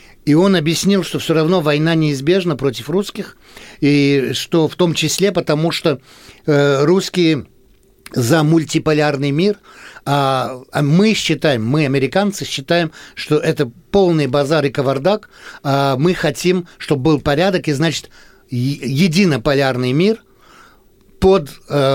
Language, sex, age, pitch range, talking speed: Russian, male, 60-79, 130-170 Hz, 120 wpm